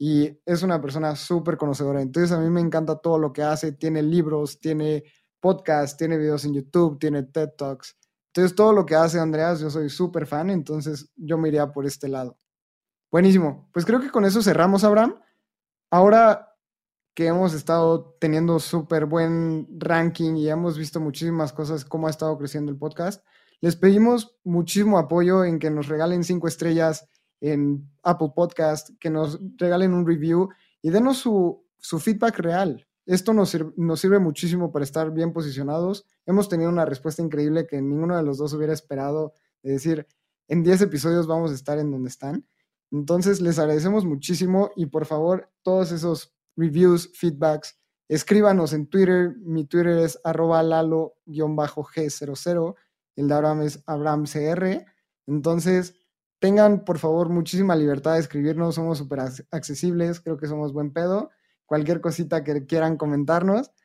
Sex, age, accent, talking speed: male, 20-39, Mexican, 160 wpm